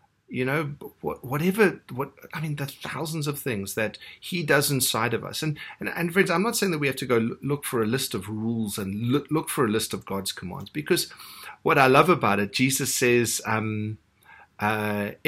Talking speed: 210 wpm